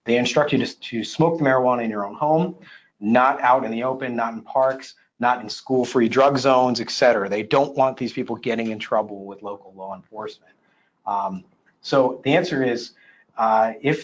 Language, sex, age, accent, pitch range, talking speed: English, male, 30-49, American, 110-140 Hz, 195 wpm